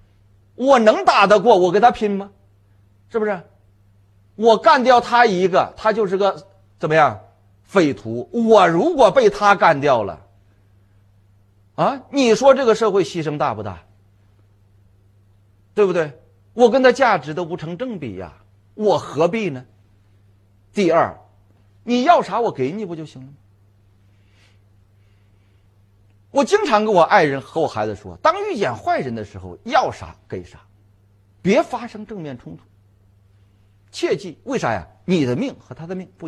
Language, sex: Chinese, male